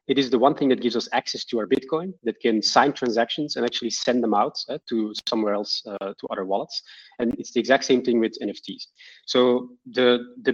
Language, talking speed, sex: English, 230 wpm, male